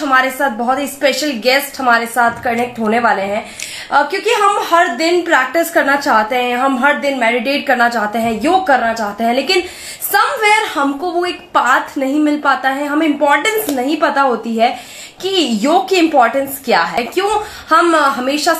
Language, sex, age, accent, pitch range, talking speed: Hindi, female, 20-39, native, 235-310 Hz, 180 wpm